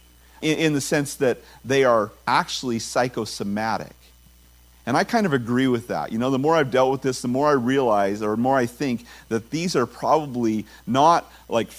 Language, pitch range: English, 105-135 Hz